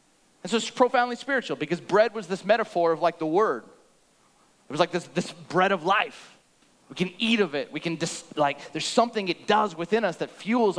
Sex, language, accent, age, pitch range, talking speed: male, English, American, 30-49, 170-215 Hz, 215 wpm